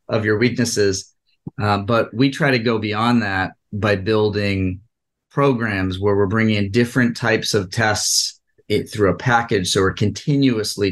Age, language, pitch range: 30-49, English, 95-110 Hz